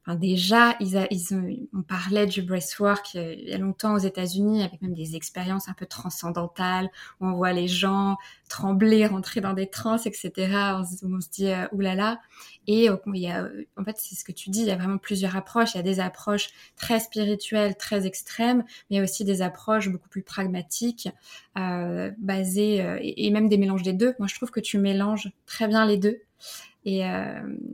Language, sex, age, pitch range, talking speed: French, female, 20-39, 185-220 Hz, 220 wpm